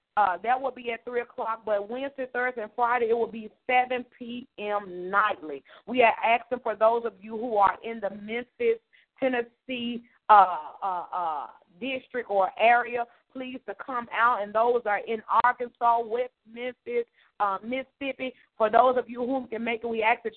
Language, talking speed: English, 180 wpm